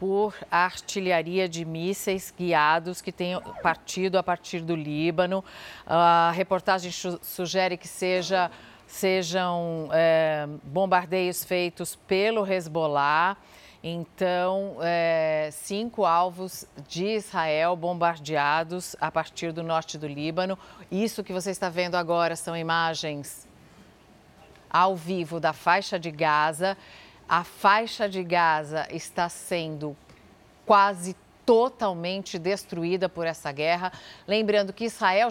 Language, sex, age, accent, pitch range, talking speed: Portuguese, female, 50-69, Brazilian, 165-210 Hz, 110 wpm